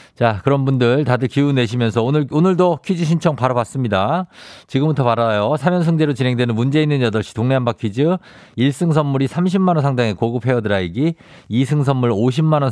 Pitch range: 110-150 Hz